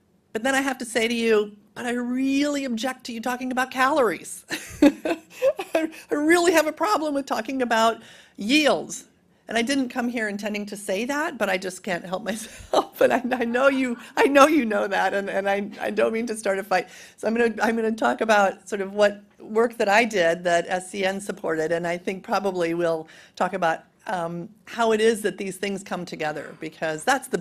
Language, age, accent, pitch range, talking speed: English, 40-59, American, 185-235 Hz, 210 wpm